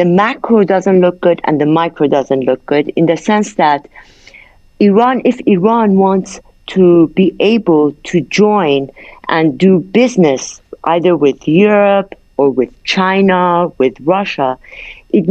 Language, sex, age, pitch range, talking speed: English, female, 50-69, 150-195 Hz, 140 wpm